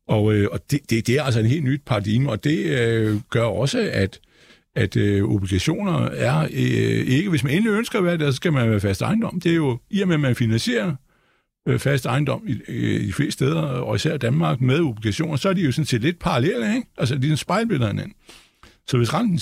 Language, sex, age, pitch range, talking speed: Danish, male, 60-79, 115-160 Hz, 230 wpm